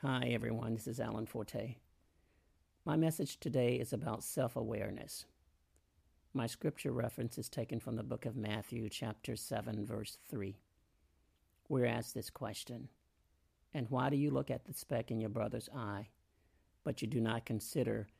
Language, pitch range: English, 85-125 Hz